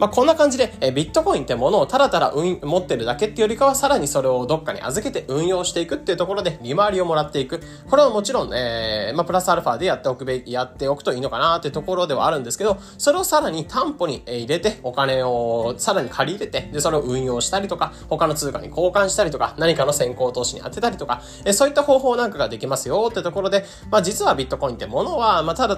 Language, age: Japanese, 20-39